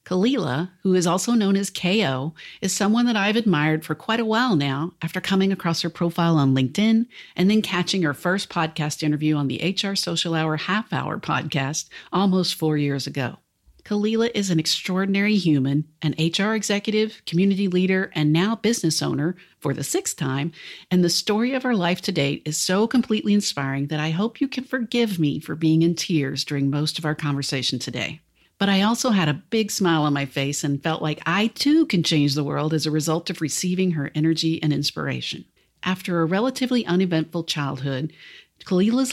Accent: American